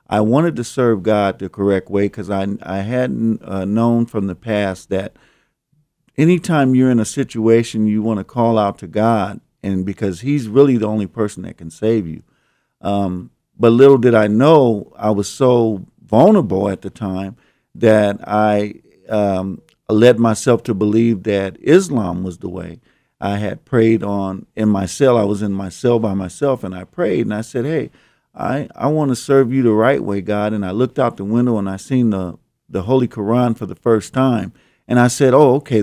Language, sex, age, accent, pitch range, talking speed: English, male, 50-69, American, 100-125 Hz, 200 wpm